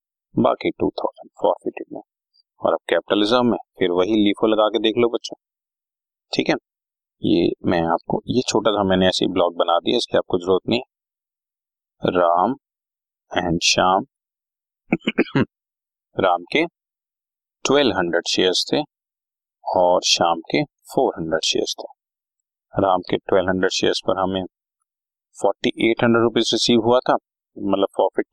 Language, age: Hindi, 30-49